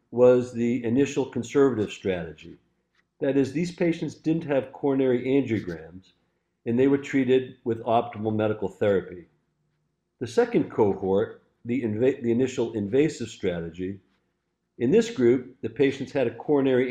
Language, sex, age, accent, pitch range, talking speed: English, male, 50-69, American, 110-135 Hz, 130 wpm